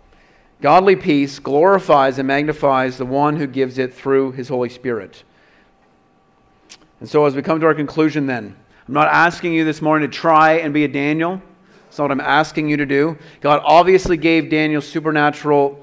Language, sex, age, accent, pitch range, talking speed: English, male, 40-59, American, 140-160 Hz, 180 wpm